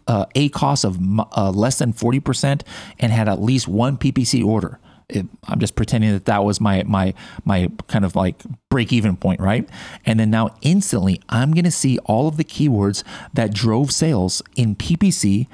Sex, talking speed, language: male, 185 wpm, English